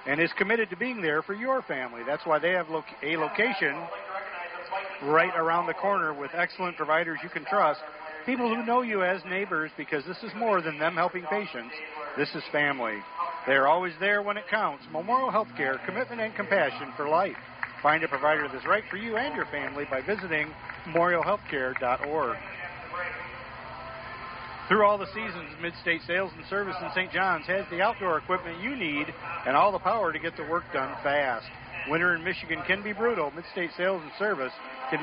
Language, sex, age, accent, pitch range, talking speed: English, male, 50-69, American, 155-195 Hz, 185 wpm